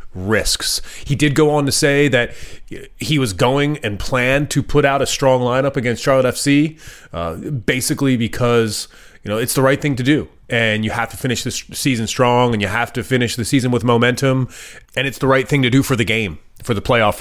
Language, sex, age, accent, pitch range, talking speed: English, male, 30-49, American, 100-140 Hz, 220 wpm